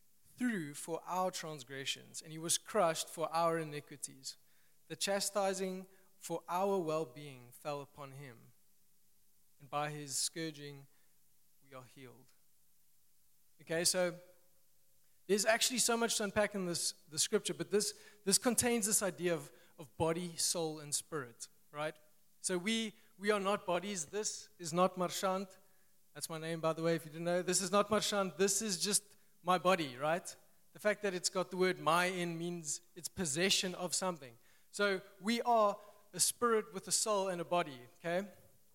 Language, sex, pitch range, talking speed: English, male, 155-200 Hz, 165 wpm